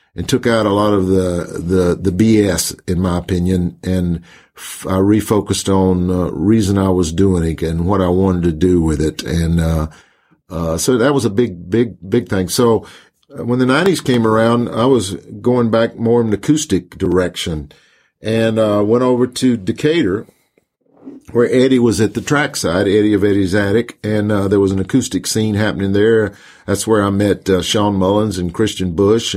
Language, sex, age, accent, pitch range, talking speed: English, male, 50-69, American, 90-115 Hz, 190 wpm